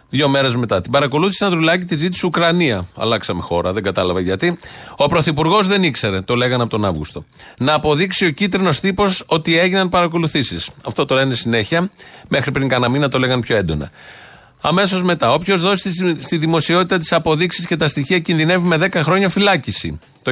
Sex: male